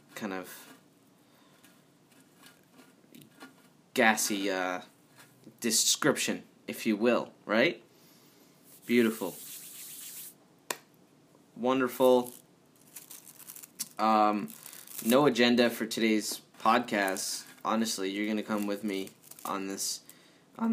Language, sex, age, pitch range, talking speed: English, male, 20-39, 105-125 Hz, 75 wpm